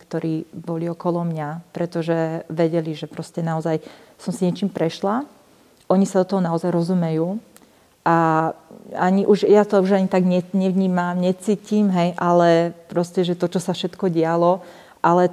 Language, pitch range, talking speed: Slovak, 165-185 Hz, 155 wpm